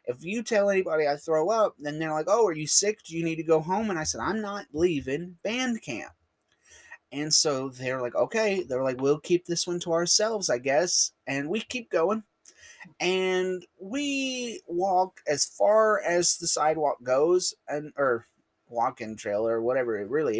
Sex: male